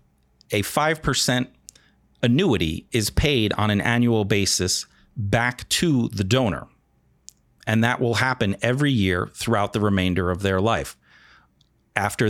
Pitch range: 100-125 Hz